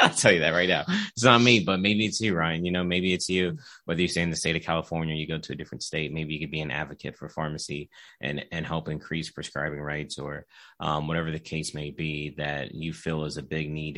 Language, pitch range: English, 80-90 Hz